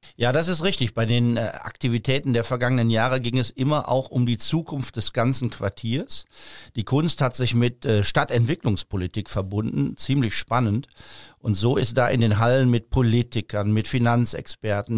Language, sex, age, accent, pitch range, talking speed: German, male, 50-69, German, 105-125 Hz, 160 wpm